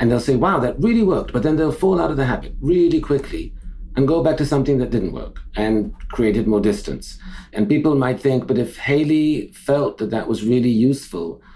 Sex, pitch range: male, 115-150 Hz